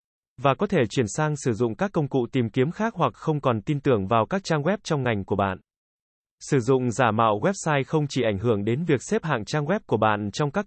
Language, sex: Vietnamese, male